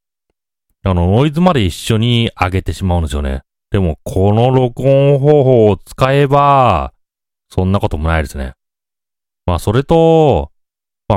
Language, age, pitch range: Japanese, 30-49, 85-140 Hz